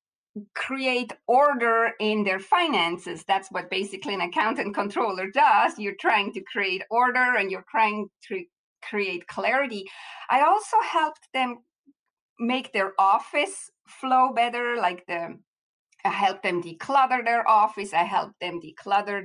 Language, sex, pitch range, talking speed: English, female, 195-255 Hz, 135 wpm